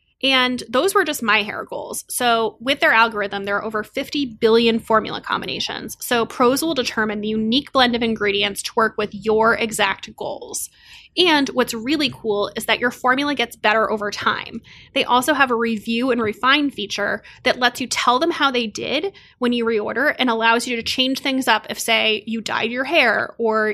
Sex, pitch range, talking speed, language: female, 215-260 Hz, 195 wpm, English